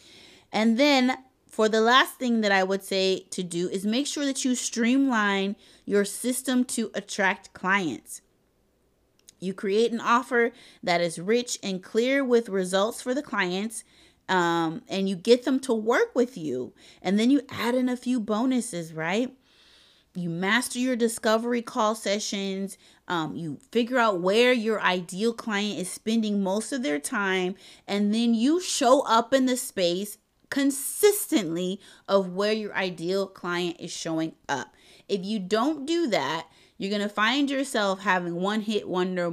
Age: 30-49